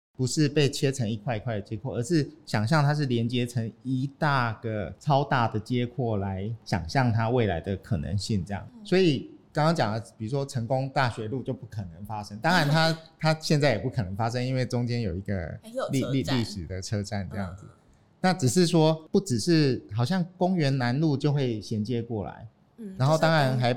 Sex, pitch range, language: male, 110-150 Hz, Chinese